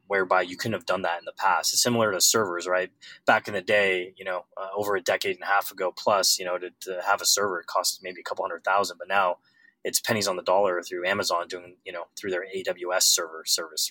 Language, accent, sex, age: English, American, male, 20-39